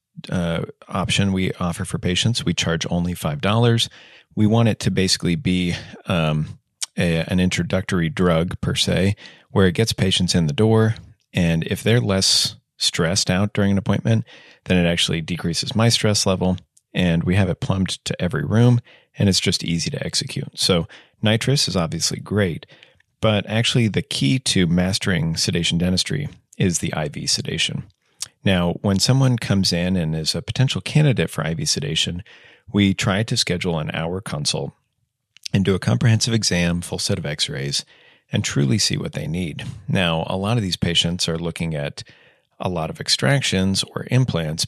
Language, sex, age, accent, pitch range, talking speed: English, male, 40-59, American, 85-110 Hz, 170 wpm